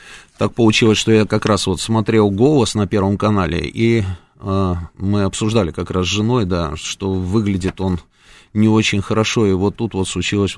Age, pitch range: 30-49, 95-110 Hz